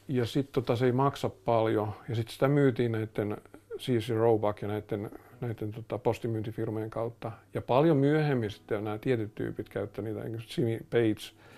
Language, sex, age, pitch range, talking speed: Finnish, male, 50-69, 110-130 Hz, 155 wpm